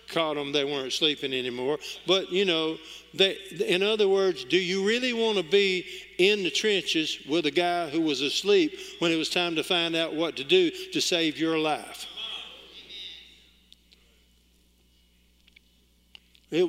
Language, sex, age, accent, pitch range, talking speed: English, male, 50-69, American, 130-190 Hz, 150 wpm